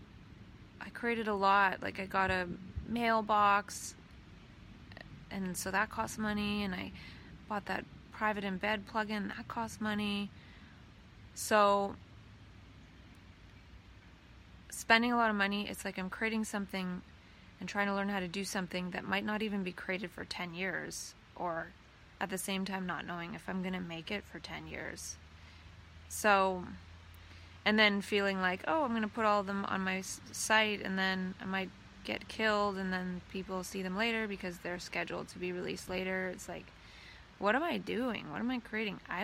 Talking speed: 175 wpm